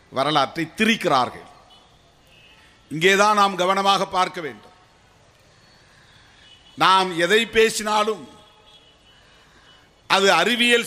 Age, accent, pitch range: 50-69, native, 185-235 Hz